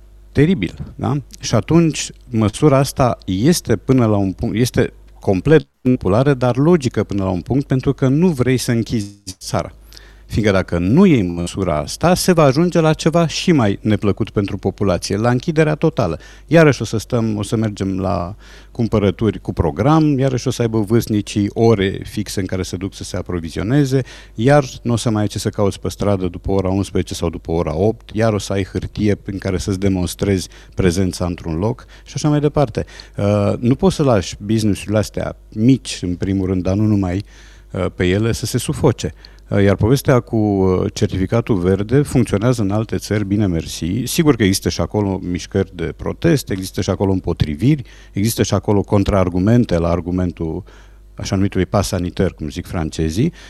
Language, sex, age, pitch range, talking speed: Romanian, male, 50-69, 95-125 Hz, 175 wpm